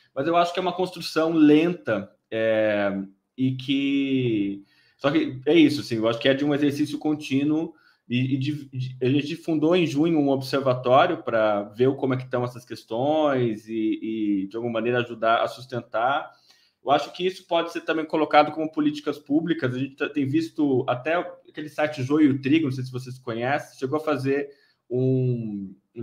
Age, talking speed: 20-39, 185 wpm